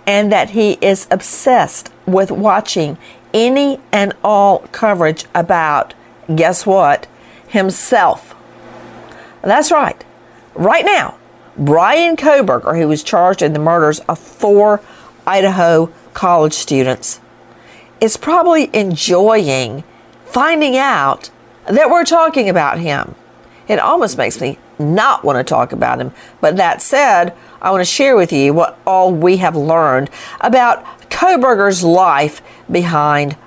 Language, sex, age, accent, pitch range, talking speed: English, female, 50-69, American, 150-225 Hz, 125 wpm